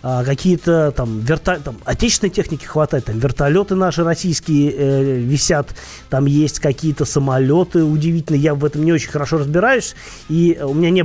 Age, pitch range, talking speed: 30-49, 130-165 Hz, 165 wpm